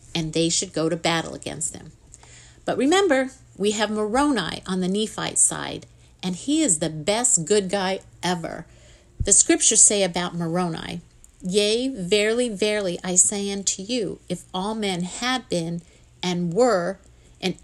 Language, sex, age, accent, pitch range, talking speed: English, female, 50-69, American, 175-230 Hz, 155 wpm